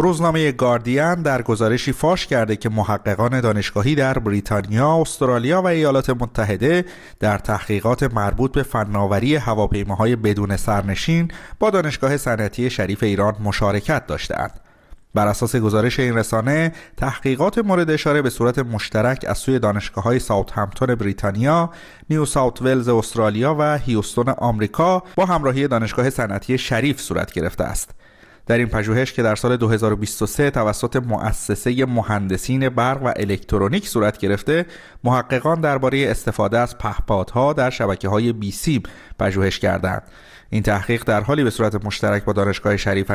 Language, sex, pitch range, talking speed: Persian, male, 105-130 Hz, 135 wpm